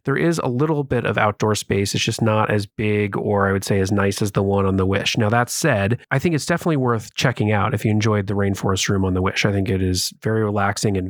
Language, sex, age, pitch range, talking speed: English, male, 30-49, 100-120 Hz, 275 wpm